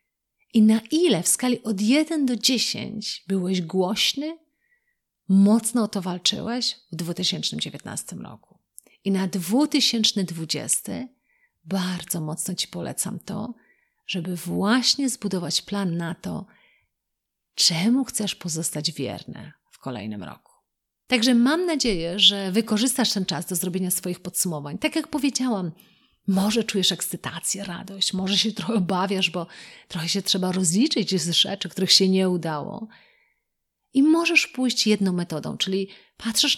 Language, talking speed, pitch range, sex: Polish, 130 wpm, 180-230 Hz, female